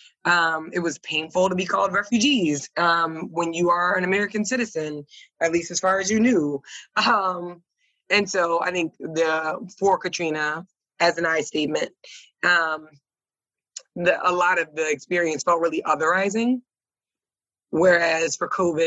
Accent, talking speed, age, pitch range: American, 150 wpm, 20-39, 155-185 Hz